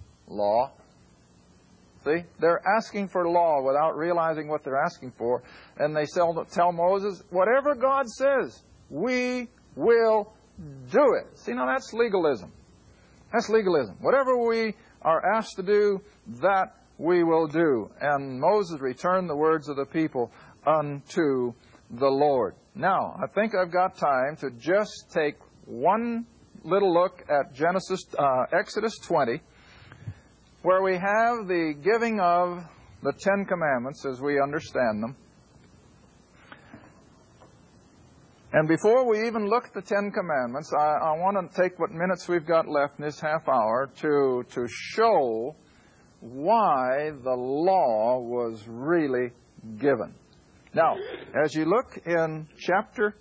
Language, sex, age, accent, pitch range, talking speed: English, male, 50-69, American, 140-200 Hz, 135 wpm